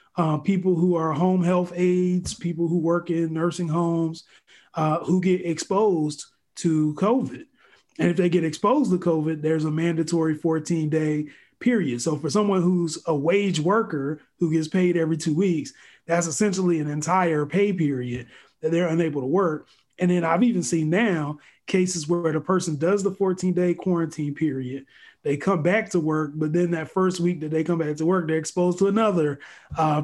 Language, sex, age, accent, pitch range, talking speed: English, male, 30-49, American, 155-180 Hz, 180 wpm